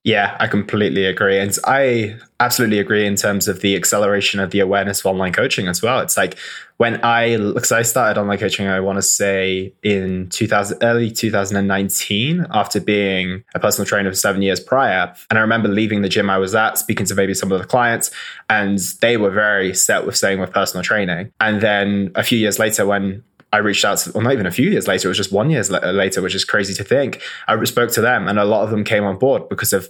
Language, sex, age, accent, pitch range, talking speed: English, male, 20-39, British, 100-115 Hz, 235 wpm